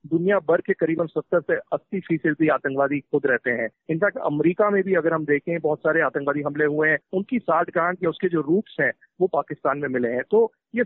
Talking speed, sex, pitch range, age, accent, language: 215 wpm, male, 155-200 Hz, 50-69, native, Hindi